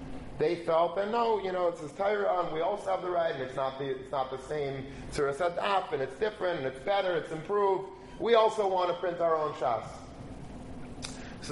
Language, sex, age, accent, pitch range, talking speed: English, male, 30-49, American, 140-185 Hz, 215 wpm